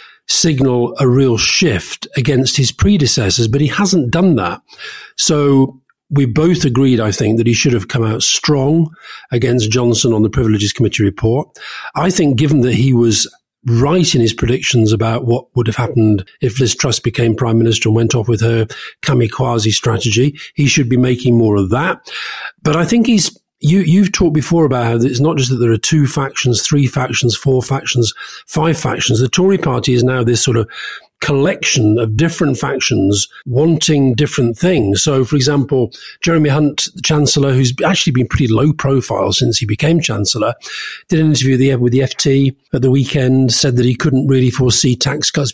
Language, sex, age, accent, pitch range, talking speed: English, male, 40-59, British, 120-145 Hz, 185 wpm